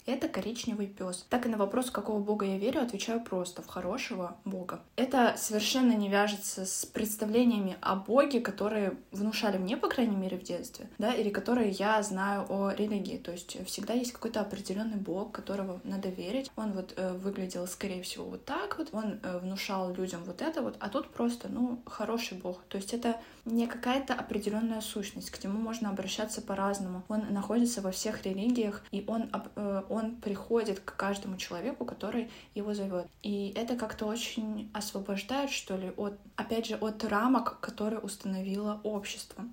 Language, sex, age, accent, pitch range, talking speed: Russian, female, 20-39, native, 195-235 Hz, 175 wpm